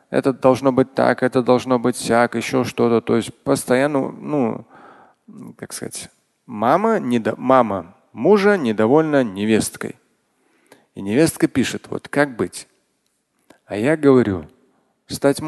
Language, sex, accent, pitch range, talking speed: Russian, male, native, 115-160 Hz, 120 wpm